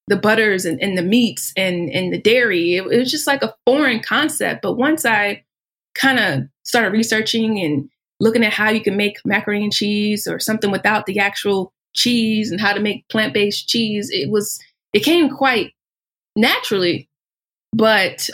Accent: American